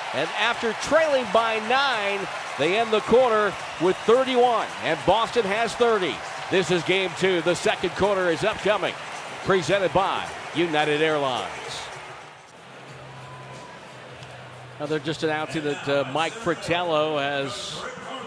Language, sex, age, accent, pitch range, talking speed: English, male, 50-69, American, 145-210 Hz, 120 wpm